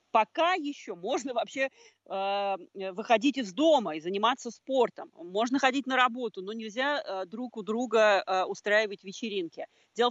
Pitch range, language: 200-255 Hz, Russian